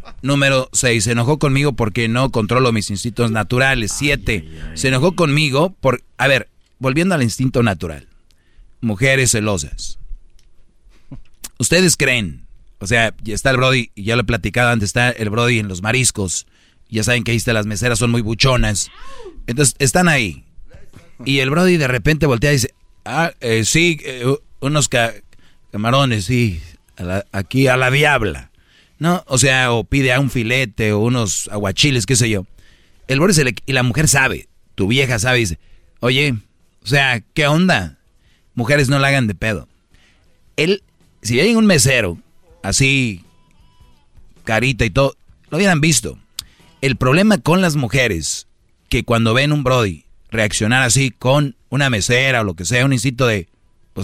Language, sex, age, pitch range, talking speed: Spanish, male, 30-49, 105-135 Hz, 170 wpm